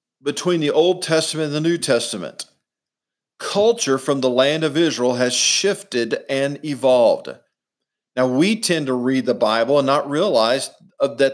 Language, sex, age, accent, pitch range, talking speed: English, male, 50-69, American, 130-180 Hz, 155 wpm